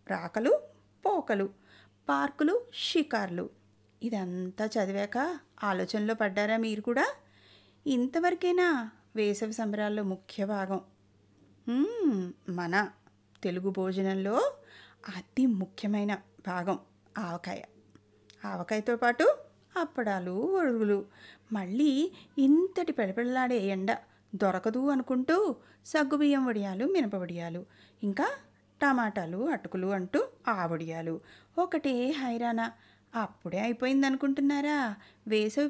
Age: 30-49